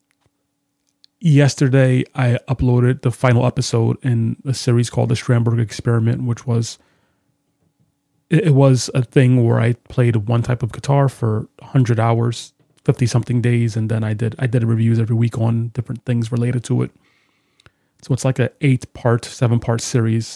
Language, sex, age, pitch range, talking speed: English, male, 30-49, 115-135 Hz, 165 wpm